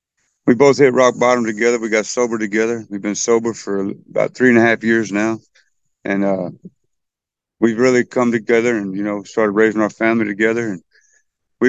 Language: English